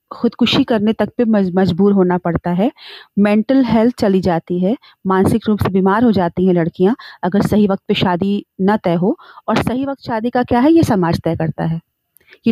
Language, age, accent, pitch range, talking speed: Hindi, 40-59, native, 185-245 Hz, 200 wpm